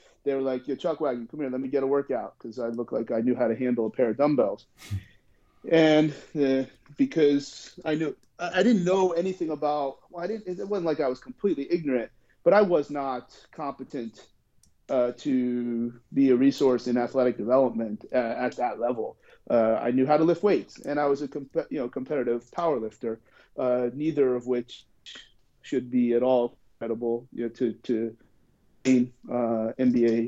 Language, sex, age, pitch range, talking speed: English, male, 30-49, 120-150 Hz, 190 wpm